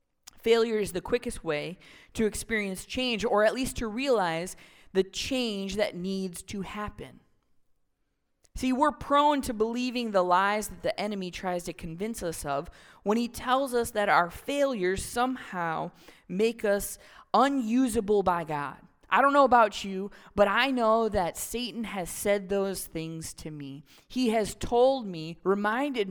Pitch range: 180-245 Hz